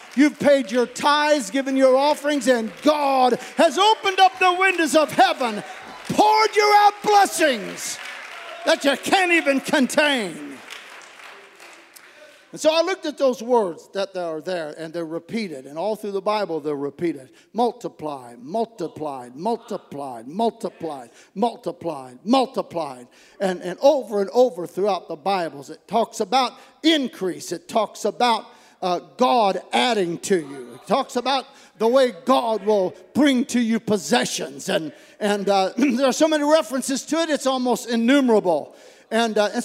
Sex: male